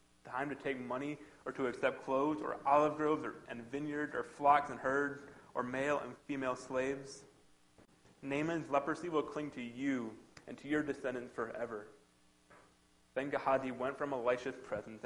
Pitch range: 125-155 Hz